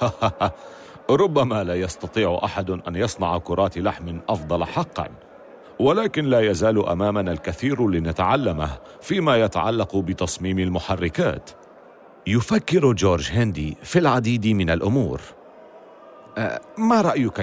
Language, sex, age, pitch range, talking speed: Arabic, male, 40-59, 95-140 Hz, 100 wpm